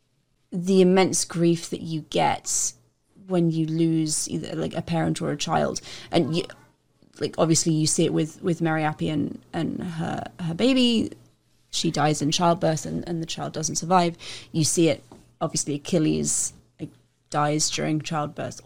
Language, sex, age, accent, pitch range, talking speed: English, female, 30-49, British, 160-190 Hz, 155 wpm